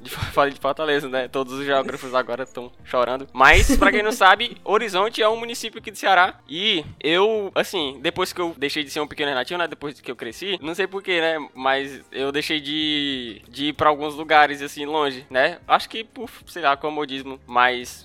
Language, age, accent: Portuguese, 20-39, Brazilian